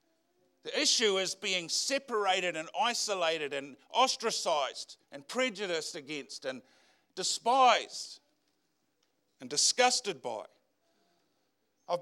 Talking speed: 90 wpm